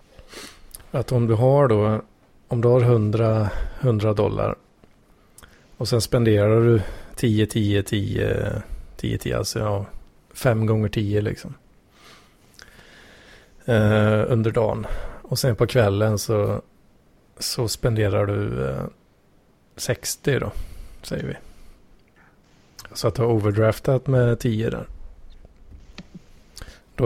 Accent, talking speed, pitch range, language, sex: Norwegian, 110 wpm, 105-120 Hz, Swedish, male